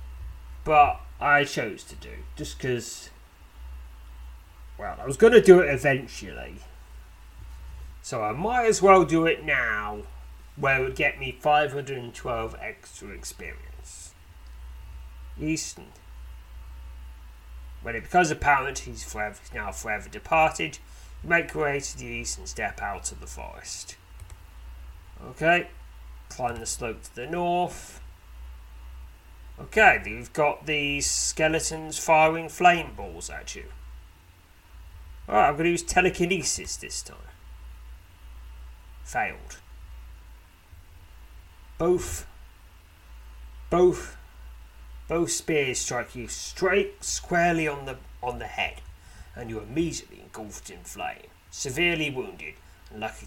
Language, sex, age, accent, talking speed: English, male, 30-49, British, 115 wpm